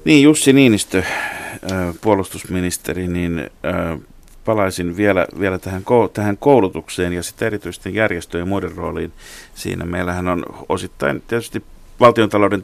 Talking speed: 110 wpm